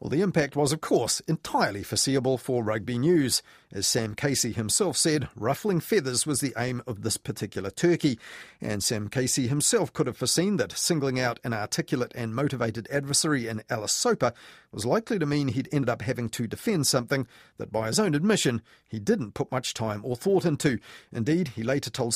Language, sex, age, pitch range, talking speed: English, male, 40-59, 115-150 Hz, 190 wpm